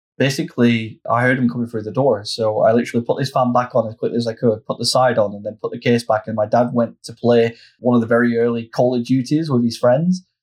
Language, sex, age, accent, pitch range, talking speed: English, male, 20-39, British, 110-125 Hz, 275 wpm